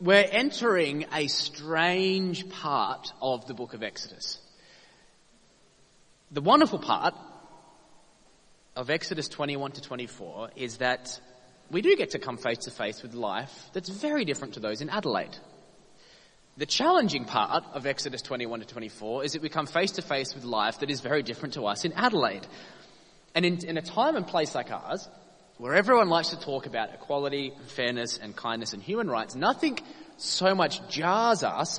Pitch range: 130-185 Hz